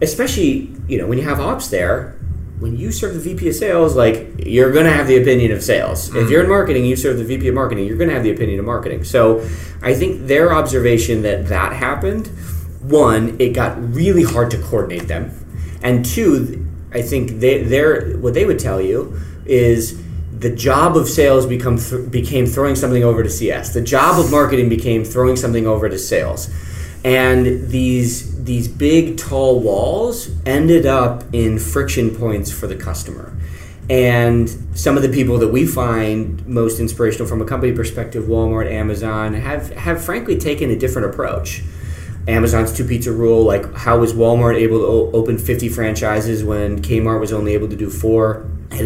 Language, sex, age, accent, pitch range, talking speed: English, male, 30-49, American, 100-125 Hz, 180 wpm